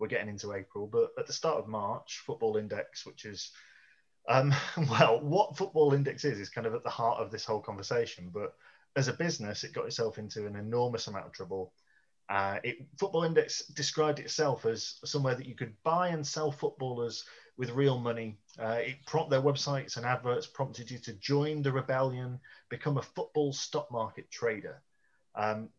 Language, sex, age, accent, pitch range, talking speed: English, male, 30-49, British, 105-145 Hz, 190 wpm